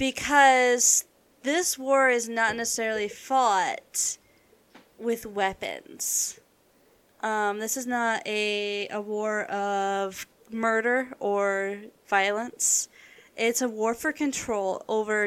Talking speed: 100 wpm